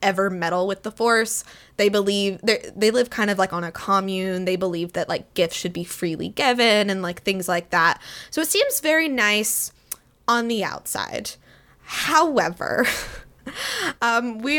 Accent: American